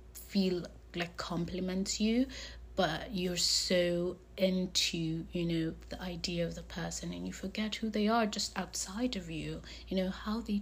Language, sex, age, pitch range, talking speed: English, female, 30-49, 160-190 Hz, 165 wpm